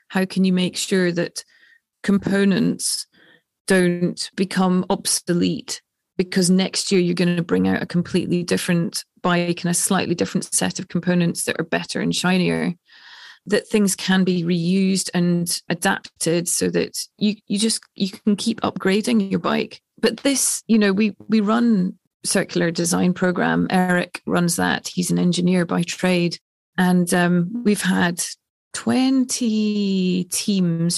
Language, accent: German, British